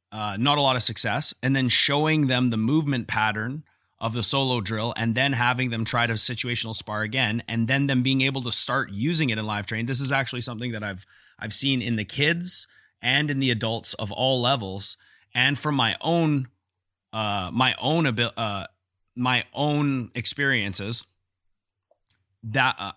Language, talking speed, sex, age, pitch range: English, 180 wpm, male, 30-49, 110-130 Hz